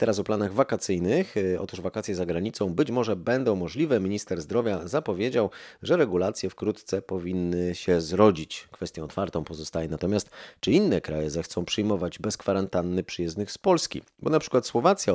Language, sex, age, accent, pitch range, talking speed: Polish, male, 30-49, native, 85-110 Hz, 155 wpm